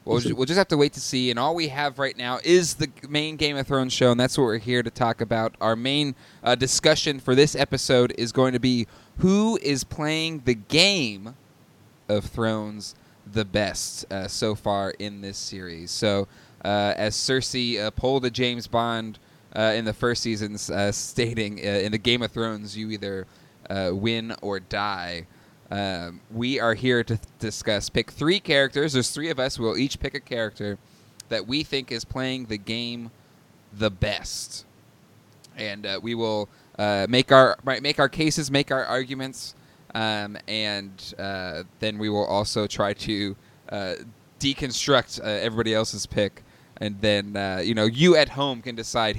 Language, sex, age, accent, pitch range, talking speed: English, male, 20-39, American, 105-135 Hz, 185 wpm